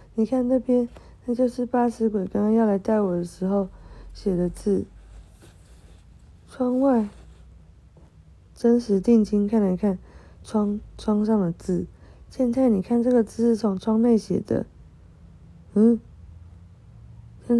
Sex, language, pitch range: female, Chinese, 175-235 Hz